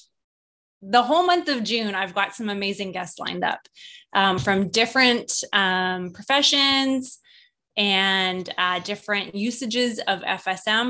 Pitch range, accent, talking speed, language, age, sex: 190-235 Hz, American, 125 wpm, English, 20-39, female